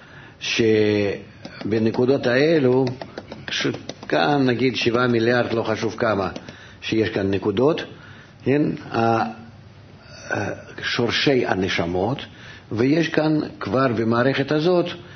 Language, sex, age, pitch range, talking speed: Hebrew, male, 50-69, 105-125 Hz, 80 wpm